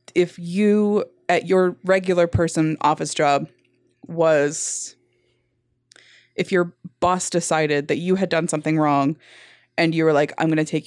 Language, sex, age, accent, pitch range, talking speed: English, female, 20-39, American, 150-180 Hz, 150 wpm